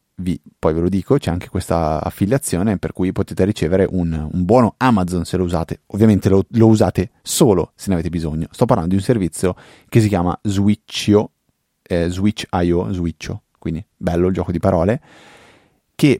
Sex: male